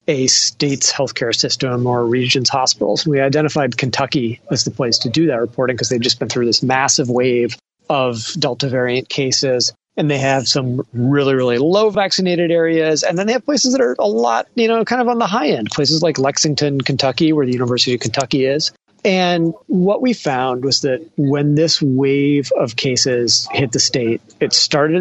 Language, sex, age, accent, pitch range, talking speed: English, male, 30-49, American, 130-160 Hz, 195 wpm